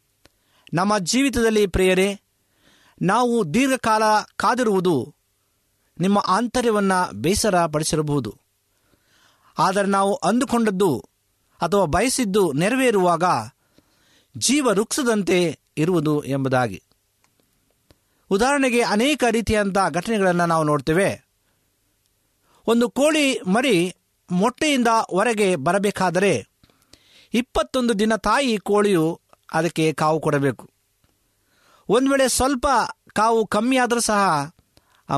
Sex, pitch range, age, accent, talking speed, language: male, 135-225 Hz, 50-69, native, 75 wpm, Kannada